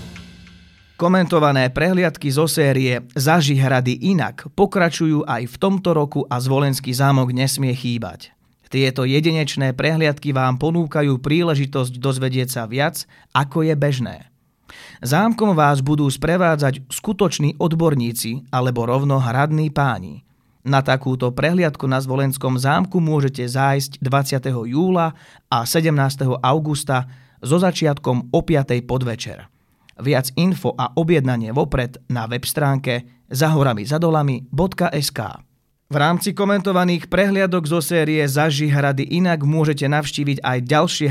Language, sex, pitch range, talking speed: Slovak, male, 125-160 Hz, 115 wpm